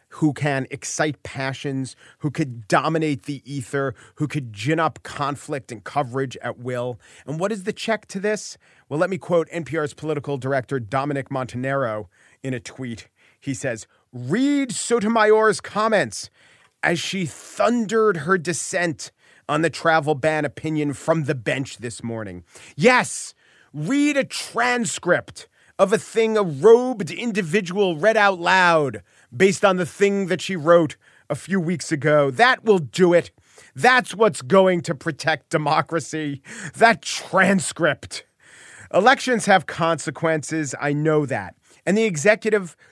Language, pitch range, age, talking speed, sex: English, 135-195 Hz, 40-59, 145 wpm, male